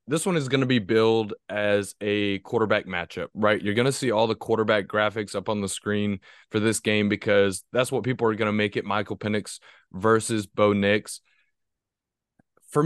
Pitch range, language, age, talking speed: 105-135 Hz, English, 20-39, 195 wpm